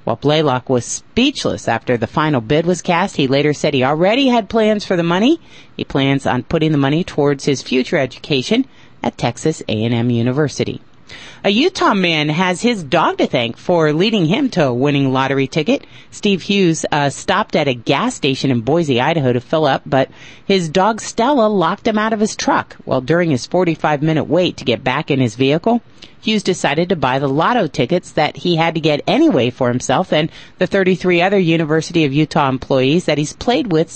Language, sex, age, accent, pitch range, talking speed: English, female, 40-59, American, 140-200 Hz, 200 wpm